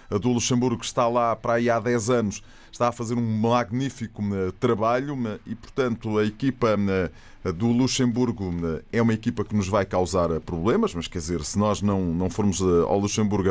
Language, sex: Portuguese, male